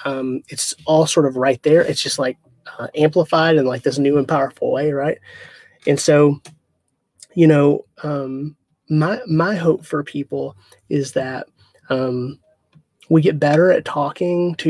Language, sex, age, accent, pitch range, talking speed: English, male, 20-39, American, 135-160 Hz, 160 wpm